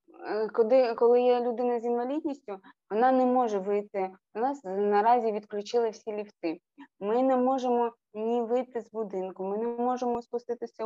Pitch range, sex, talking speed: 200-245 Hz, female, 150 wpm